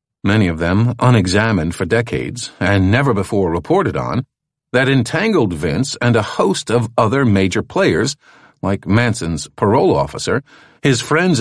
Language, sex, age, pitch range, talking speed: English, male, 50-69, 100-145 Hz, 140 wpm